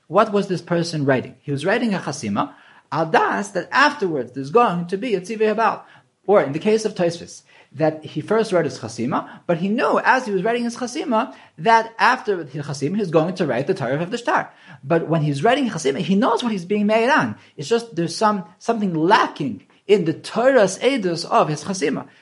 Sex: male